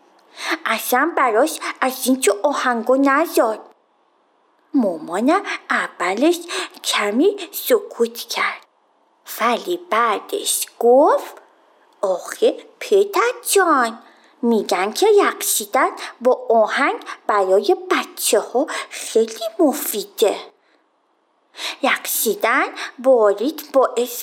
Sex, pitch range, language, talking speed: female, 255-395 Hz, Persian, 75 wpm